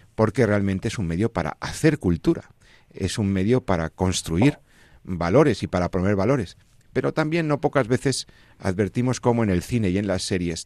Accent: Spanish